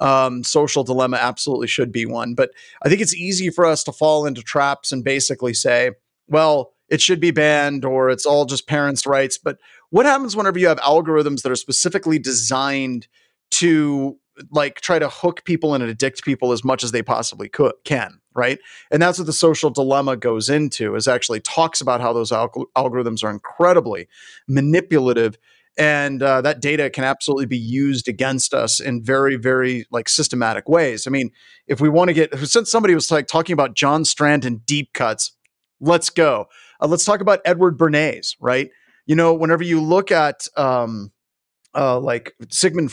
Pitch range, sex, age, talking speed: 130-160 Hz, male, 30-49, 180 wpm